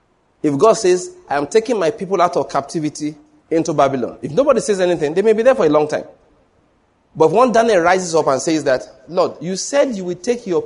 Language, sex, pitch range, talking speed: English, male, 155-205 Hz, 220 wpm